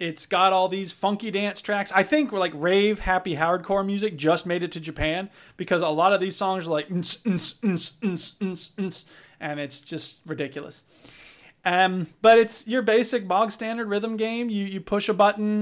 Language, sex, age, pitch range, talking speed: English, male, 30-49, 175-230 Hz, 200 wpm